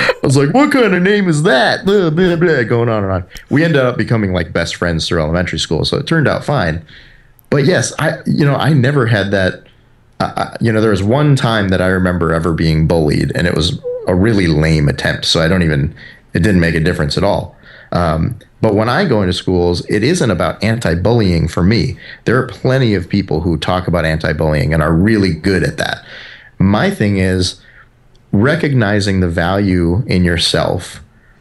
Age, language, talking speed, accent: 30-49, English, 200 wpm, American